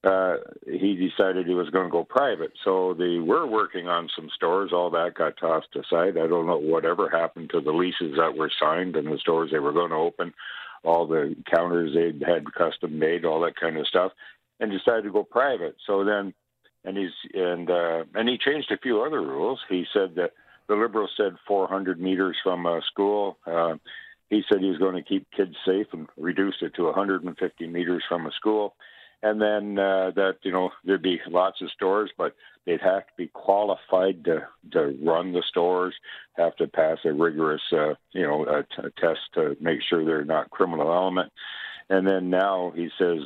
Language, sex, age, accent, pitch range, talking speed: English, male, 60-79, American, 90-95 Hz, 195 wpm